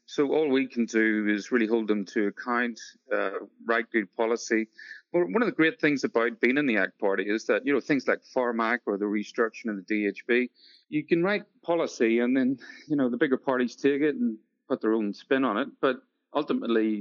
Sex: male